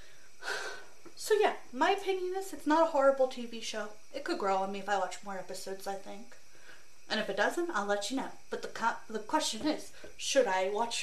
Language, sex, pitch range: English, female, 205-315 Hz